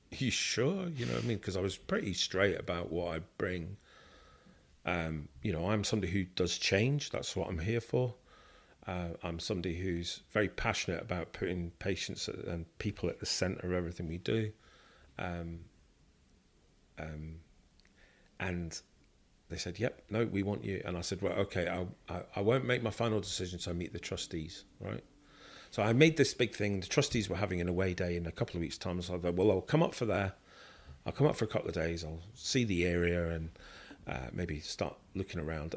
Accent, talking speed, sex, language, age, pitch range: British, 205 wpm, male, English, 40-59, 85-100 Hz